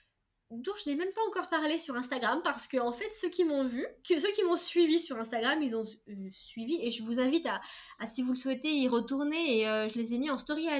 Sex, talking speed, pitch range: female, 270 wpm, 215-300 Hz